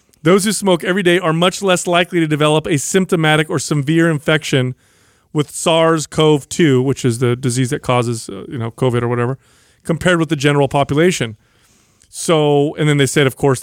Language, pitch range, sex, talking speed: English, 135-170 Hz, male, 185 wpm